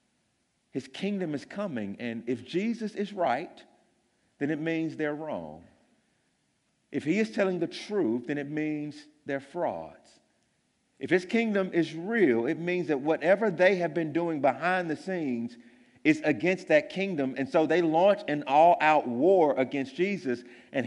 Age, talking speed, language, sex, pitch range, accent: 50-69, 160 wpm, English, male, 120-185 Hz, American